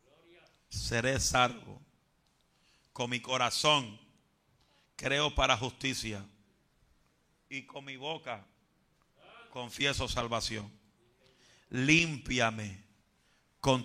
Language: Spanish